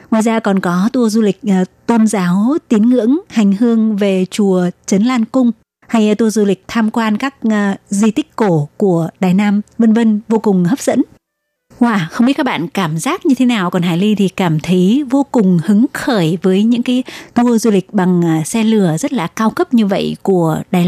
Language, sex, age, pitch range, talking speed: Vietnamese, female, 20-39, 190-230 Hz, 220 wpm